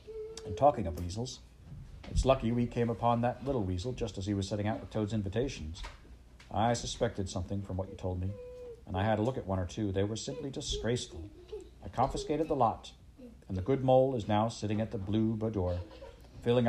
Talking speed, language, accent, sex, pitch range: 210 wpm, English, American, male, 95-120 Hz